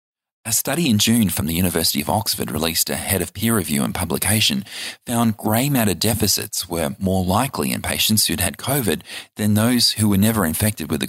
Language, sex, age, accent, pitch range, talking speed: English, male, 30-49, Australian, 90-110 Hz, 200 wpm